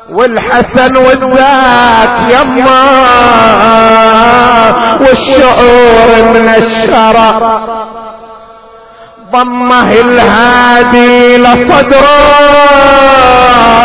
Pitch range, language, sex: 230-270 Hz, Arabic, male